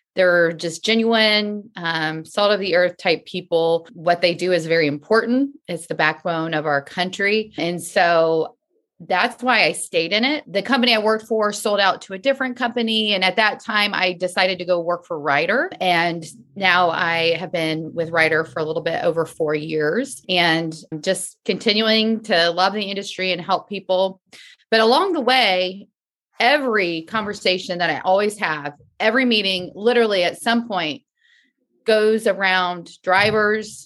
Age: 30-49